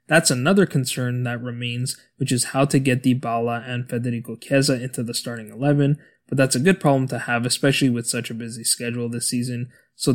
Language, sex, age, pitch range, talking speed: English, male, 20-39, 120-140 Hz, 200 wpm